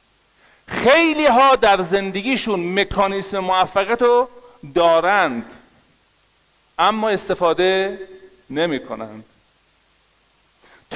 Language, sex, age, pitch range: Persian, male, 40-59, 165-235 Hz